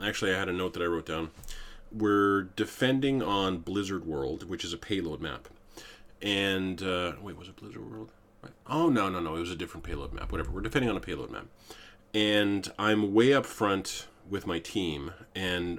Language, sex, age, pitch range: English, male, 30-49, 90-110 Hz